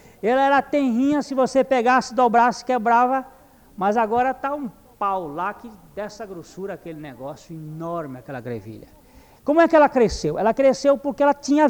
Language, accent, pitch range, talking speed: Portuguese, Brazilian, 200-285 Hz, 165 wpm